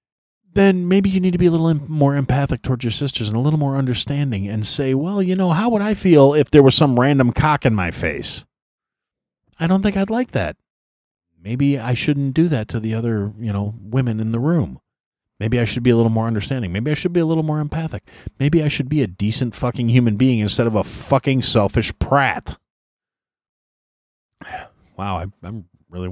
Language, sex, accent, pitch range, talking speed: English, male, American, 95-140 Hz, 210 wpm